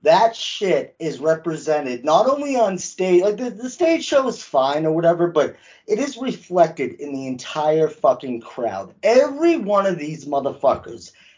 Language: English